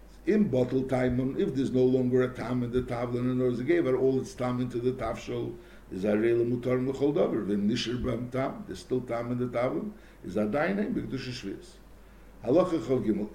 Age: 60-79